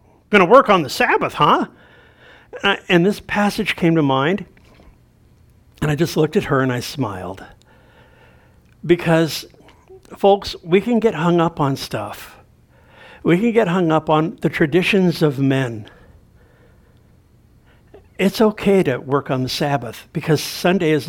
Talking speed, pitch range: 145 wpm, 140-200 Hz